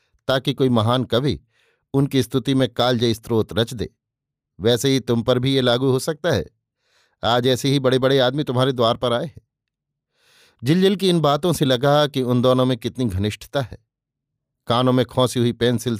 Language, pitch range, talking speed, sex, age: Hindi, 115-140 Hz, 190 wpm, male, 50-69